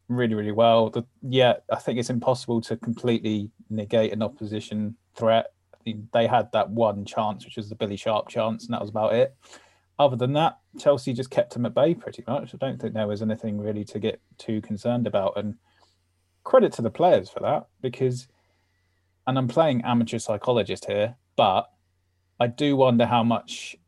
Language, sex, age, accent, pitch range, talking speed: English, male, 20-39, British, 105-120 Hz, 190 wpm